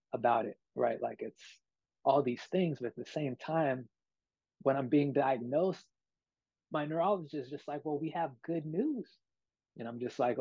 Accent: American